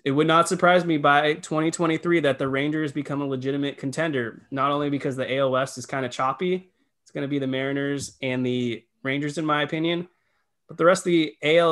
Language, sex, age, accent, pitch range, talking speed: English, male, 20-39, American, 125-155 Hz, 215 wpm